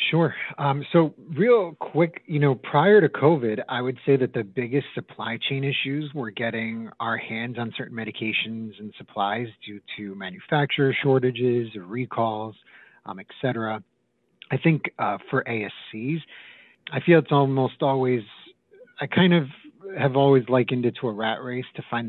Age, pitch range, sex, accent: 30-49, 110-140 Hz, male, American